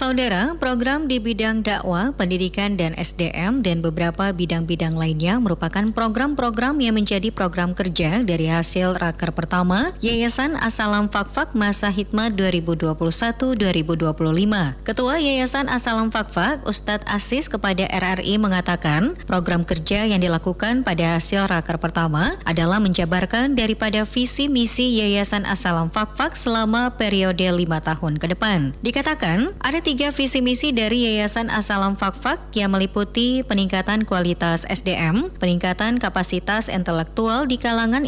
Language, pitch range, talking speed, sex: Indonesian, 180-240 Hz, 125 wpm, male